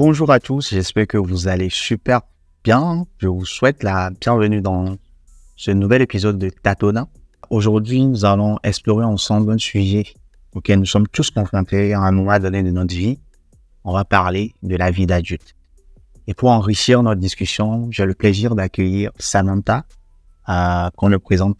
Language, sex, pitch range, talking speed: French, male, 90-110 Hz, 165 wpm